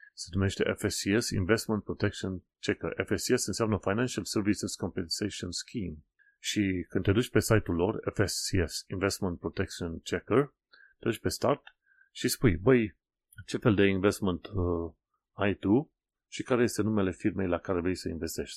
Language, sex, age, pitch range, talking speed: Romanian, male, 30-49, 90-110 Hz, 150 wpm